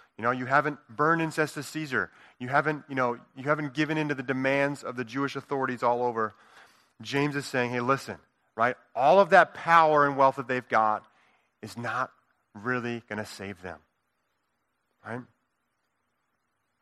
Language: English